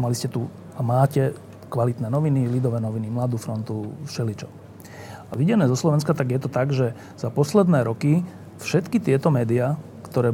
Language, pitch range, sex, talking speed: Slovak, 115-150 Hz, male, 165 wpm